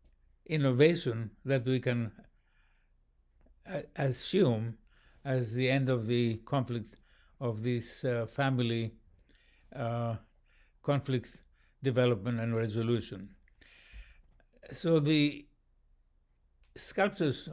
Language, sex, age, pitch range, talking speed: English, male, 60-79, 110-135 Hz, 80 wpm